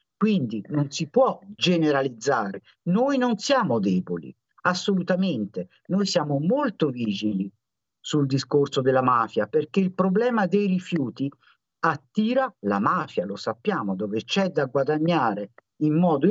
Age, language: 50-69, Italian